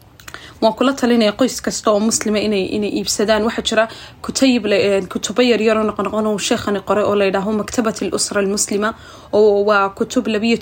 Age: 20-39